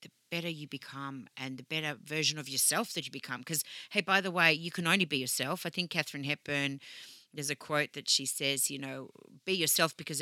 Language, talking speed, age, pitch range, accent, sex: English, 215 wpm, 40-59, 135-160 Hz, Australian, female